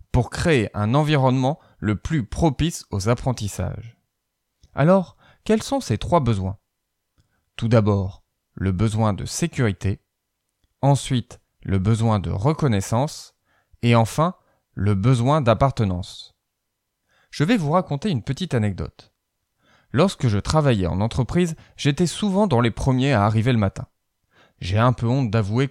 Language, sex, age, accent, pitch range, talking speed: French, male, 20-39, French, 105-145 Hz, 135 wpm